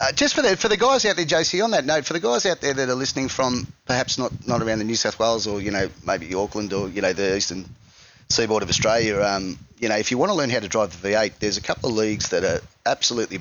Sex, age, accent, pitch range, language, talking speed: male, 30-49, Australian, 100-120 Hz, English, 285 wpm